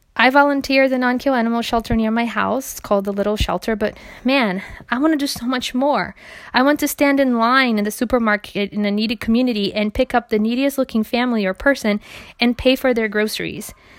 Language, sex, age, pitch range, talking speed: English, female, 20-39, 200-255 Hz, 215 wpm